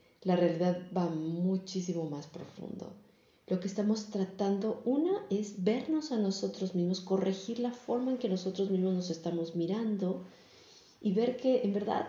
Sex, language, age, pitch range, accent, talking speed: female, Spanish, 40-59, 190-235 Hz, Mexican, 155 wpm